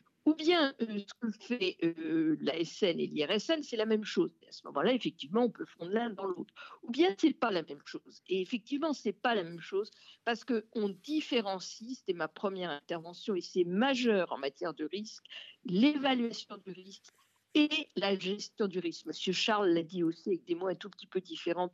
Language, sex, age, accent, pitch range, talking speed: French, female, 50-69, French, 180-270 Hz, 215 wpm